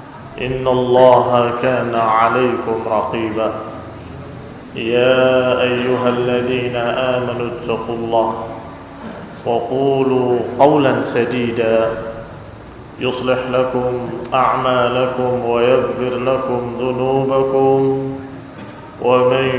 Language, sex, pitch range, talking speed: Indonesian, male, 120-130 Hz, 65 wpm